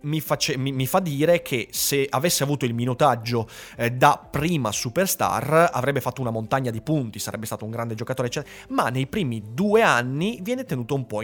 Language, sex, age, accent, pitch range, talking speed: Italian, male, 30-49, native, 120-185 Hz, 185 wpm